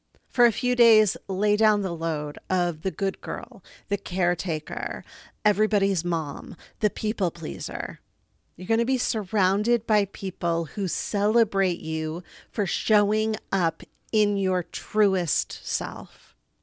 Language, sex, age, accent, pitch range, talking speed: English, female, 40-59, American, 185-225 Hz, 130 wpm